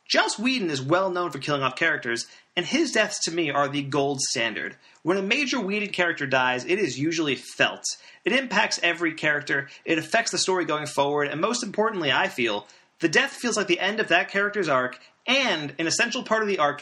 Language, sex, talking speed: English, male, 215 wpm